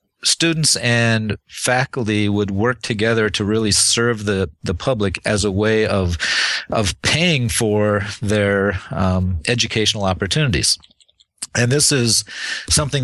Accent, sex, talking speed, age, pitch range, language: American, male, 125 wpm, 40-59, 95-120 Hz, English